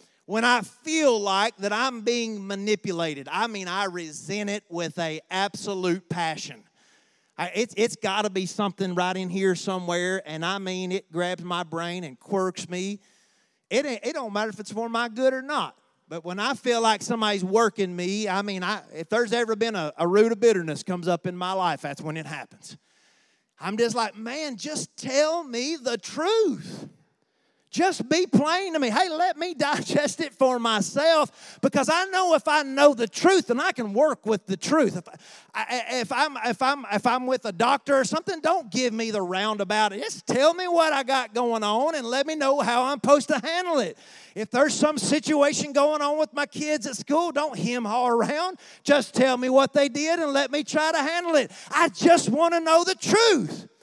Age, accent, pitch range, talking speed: 30-49, American, 195-295 Hz, 205 wpm